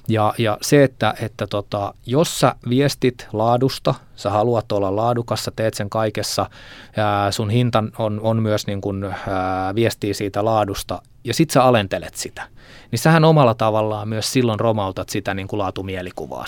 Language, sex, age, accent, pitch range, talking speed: Finnish, male, 20-39, native, 100-125 Hz, 155 wpm